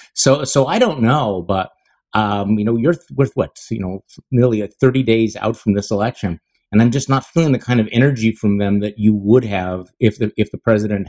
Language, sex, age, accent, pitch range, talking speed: English, male, 50-69, American, 105-125 Hz, 220 wpm